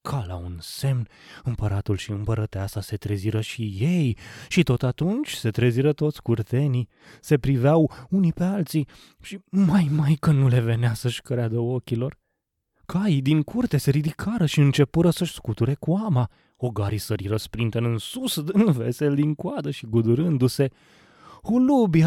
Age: 20-39